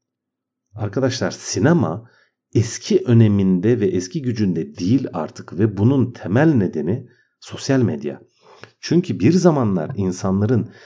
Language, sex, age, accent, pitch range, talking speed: Turkish, male, 50-69, native, 90-130 Hz, 105 wpm